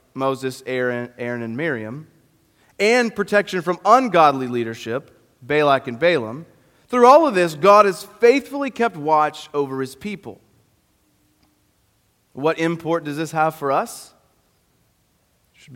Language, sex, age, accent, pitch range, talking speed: English, male, 30-49, American, 130-185 Hz, 130 wpm